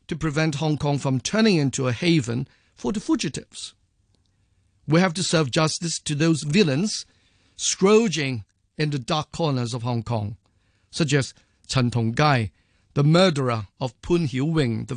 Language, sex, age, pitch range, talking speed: English, male, 50-69, 115-165 Hz, 155 wpm